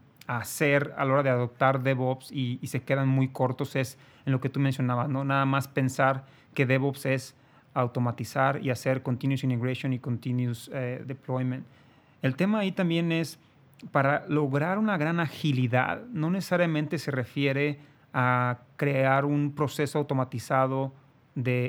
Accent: Mexican